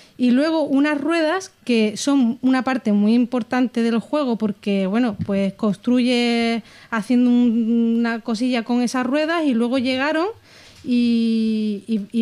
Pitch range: 225-265 Hz